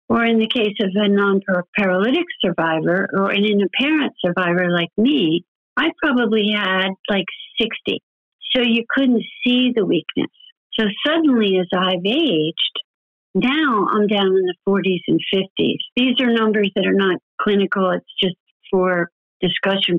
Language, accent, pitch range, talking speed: English, American, 185-235 Hz, 150 wpm